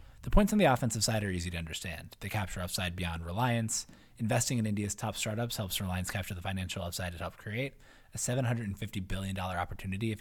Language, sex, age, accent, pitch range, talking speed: English, male, 20-39, American, 95-120 Hz, 200 wpm